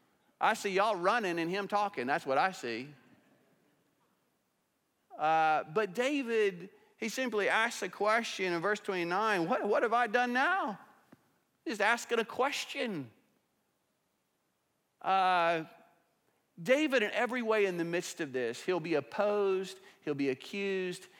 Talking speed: 135 wpm